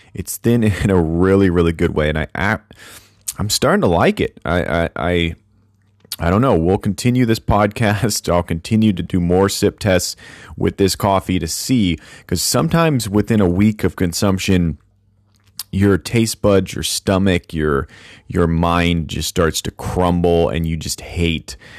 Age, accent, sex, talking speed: 30-49, American, male, 170 wpm